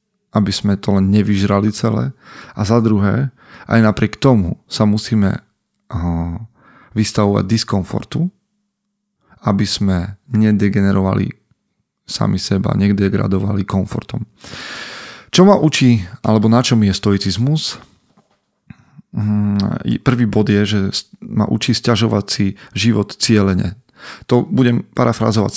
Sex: male